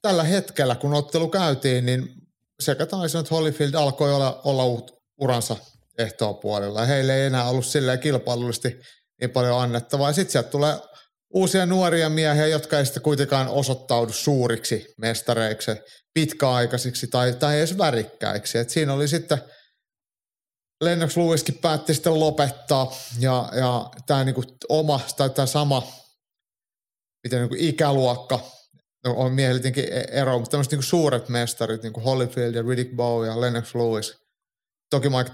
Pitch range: 120-150 Hz